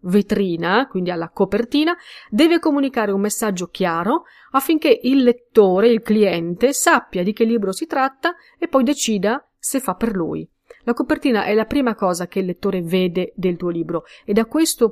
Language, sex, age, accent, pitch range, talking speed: Italian, female, 40-59, native, 195-245 Hz, 175 wpm